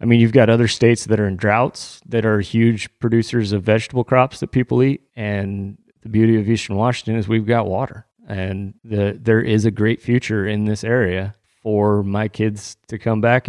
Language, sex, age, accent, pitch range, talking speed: English, male, 30-49, American, 100-120 Hz, 200 wpm